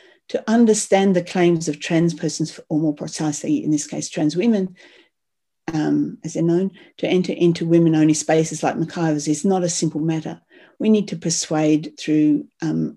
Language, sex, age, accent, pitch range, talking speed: English, female, 50-69, Australian, 150-180 Hz, 170 wpm